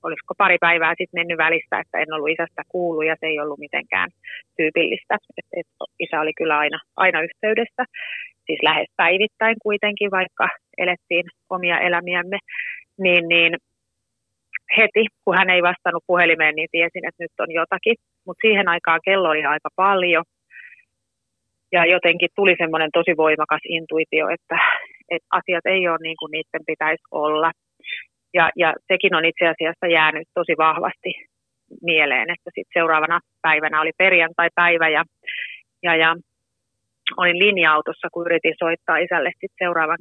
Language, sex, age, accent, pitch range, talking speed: Finnish, female, 30-49, native, 160-180 Hz, 145 wpm